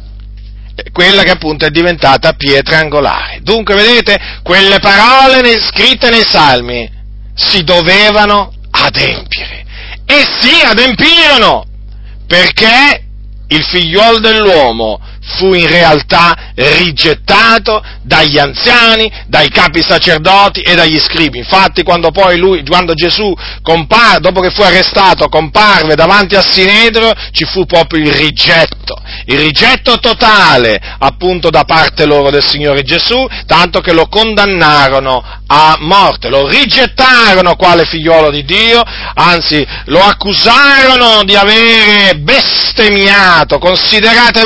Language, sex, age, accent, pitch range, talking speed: Italian, male, 40-59, native, 155-220 Hz, 115 wpm